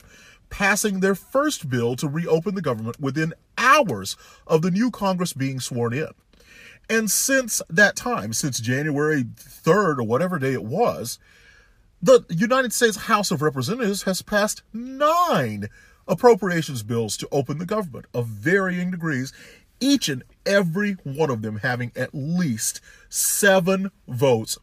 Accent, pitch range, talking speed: American, 115-185 Hz, 140 wpm